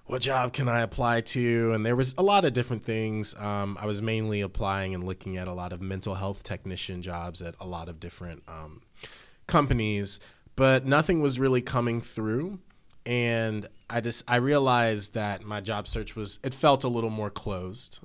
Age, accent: 20-39, American